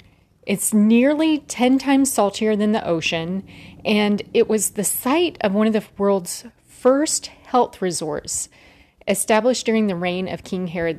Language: English